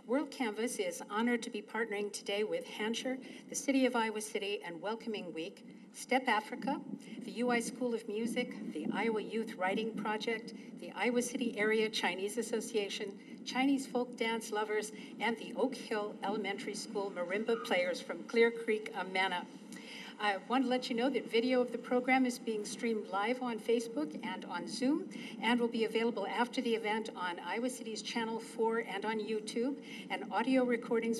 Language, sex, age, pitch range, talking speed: English, female, 50-69, 215-250 Hz, 175 wpm